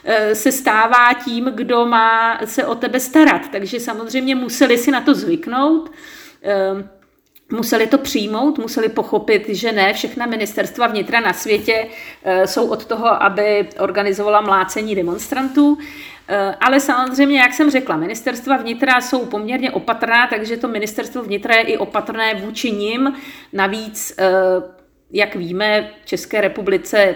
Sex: female